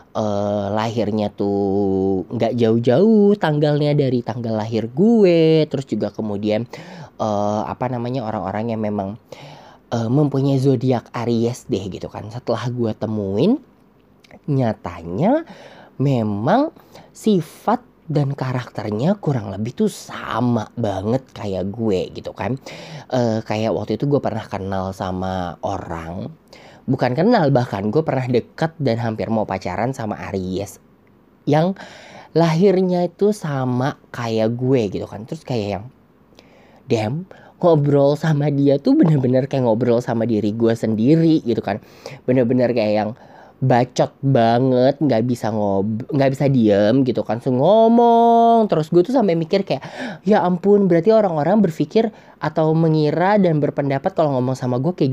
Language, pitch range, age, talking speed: Indonesian, 110-160 Hz, 20-39, 135 wpm